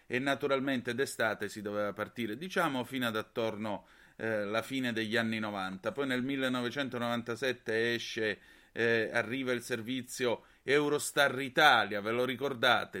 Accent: native